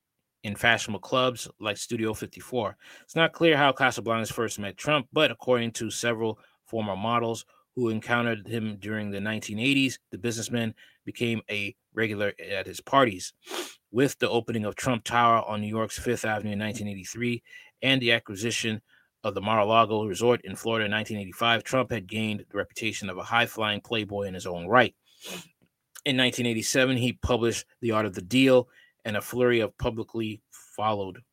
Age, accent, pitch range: 20-39, American, 105-120 Hz